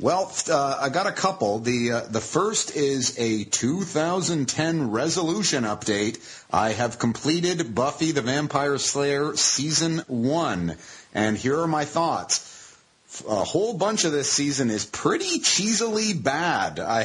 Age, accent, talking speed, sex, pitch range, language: 30-49, American, 140 wpm, male, 115-150 Hz, English